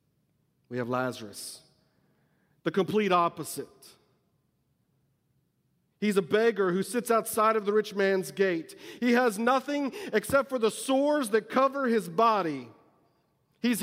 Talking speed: 125 wpm